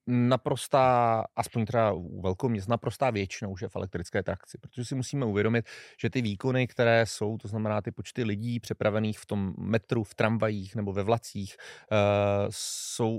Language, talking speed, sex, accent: Czech, 170 wpm, male, native